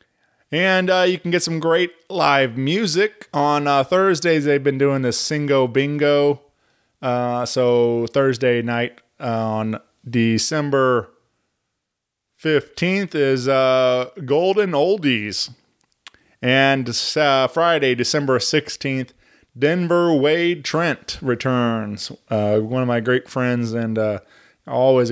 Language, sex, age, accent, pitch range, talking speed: English, male, 20-39, American, 125-160 Hz, 110 wpm